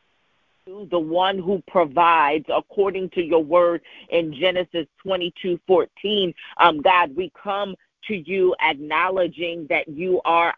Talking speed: 135 wpm